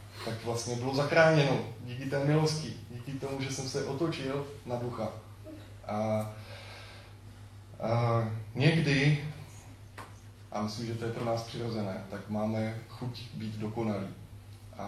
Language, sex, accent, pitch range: Czech, male, native, 110-130 Hz